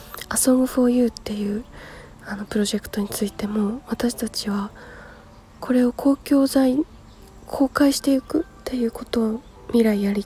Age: 20-39